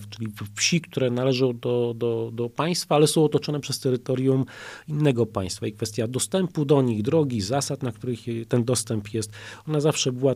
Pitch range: 115-145 Hz